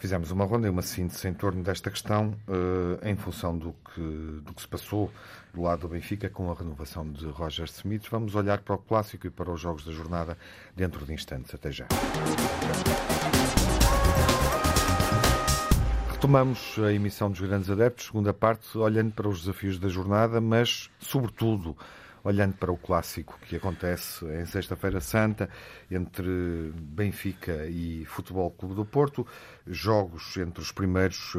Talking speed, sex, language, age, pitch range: 150 wpm, male, Portuguese, 50-69, 85-105 Hz